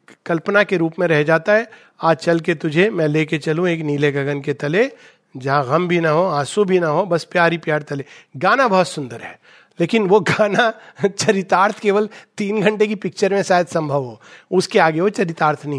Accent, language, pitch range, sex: native, Hindi, 170-260 Hz, male